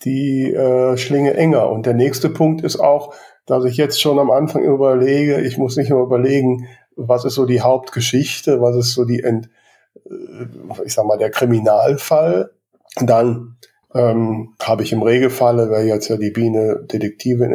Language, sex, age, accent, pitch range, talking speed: German, male, 50-69, German, 115-140 Hz, 170 wpm